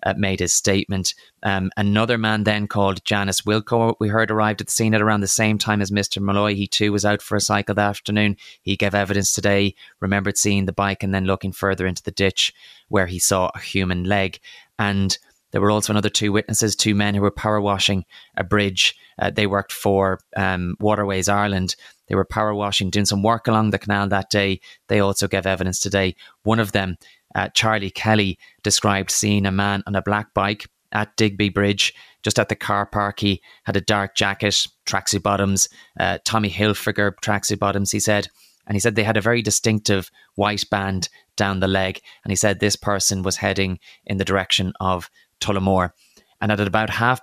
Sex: male